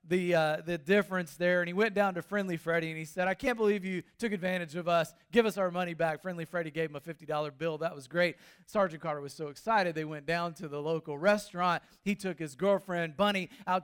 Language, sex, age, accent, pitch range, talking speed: English, male, 40-59, American, 160-195 Hz, 245 wpm